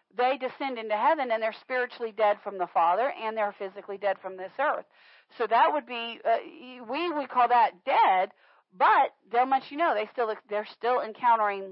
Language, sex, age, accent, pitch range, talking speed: English, female, 40-59, American, 210-280 Hz, 195 wpm